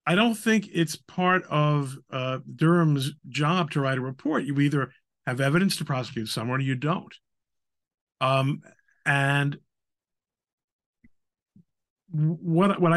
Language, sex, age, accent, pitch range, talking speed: English, male, 50-69, American, 115-150 Hz, 125 wpm